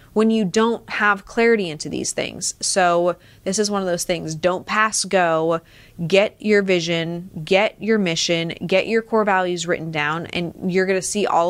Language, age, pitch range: English, 20-39, 165-210 Hz